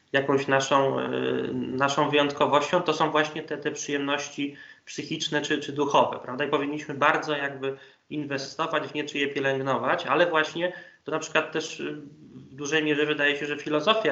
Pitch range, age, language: 135-155 Hz, 20-39, Polish